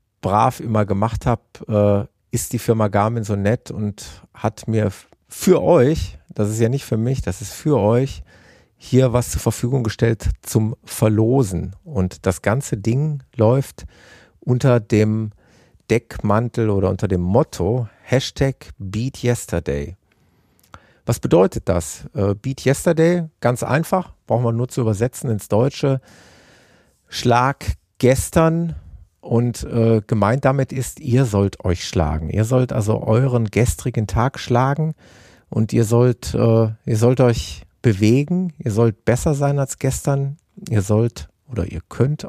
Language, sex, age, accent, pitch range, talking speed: German, male, 50-69, German, 100-130 Hz, 140 wpm